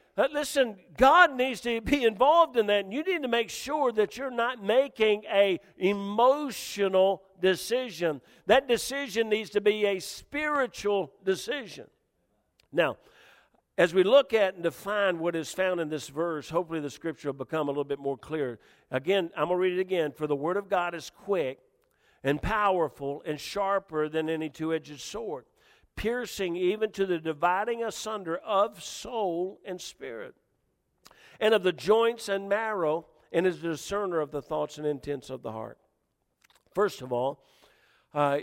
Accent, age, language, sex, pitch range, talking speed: American, 50-69, English, male, 155-210 Hz, 165 wpm